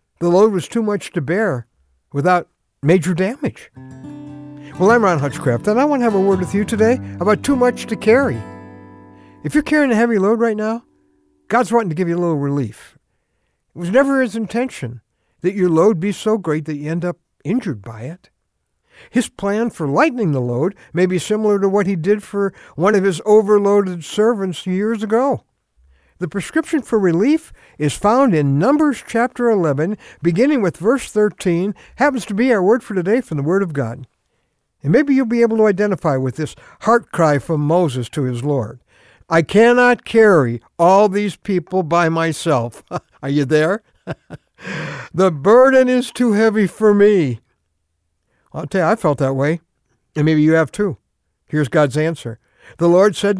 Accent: American